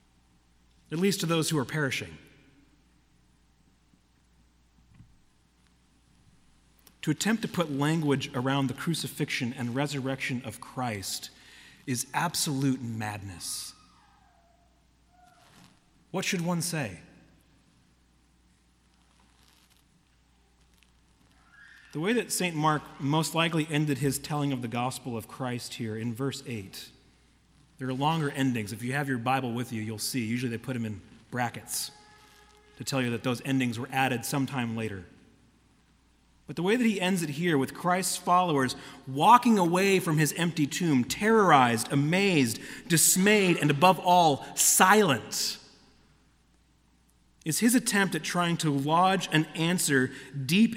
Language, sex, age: English, male, 40-59